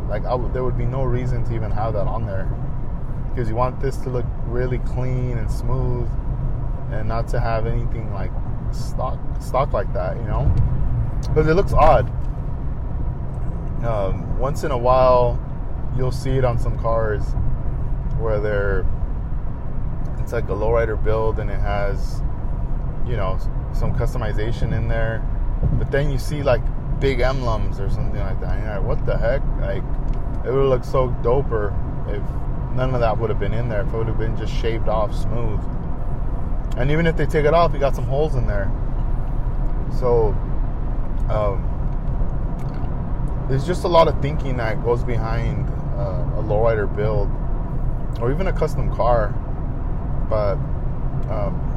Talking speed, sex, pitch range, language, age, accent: 165 wpm, male, 110-130 Hz, English, 20-39, American